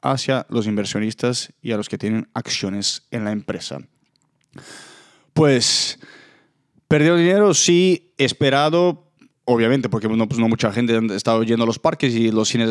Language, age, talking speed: Spanish, 20-39, 155 wpm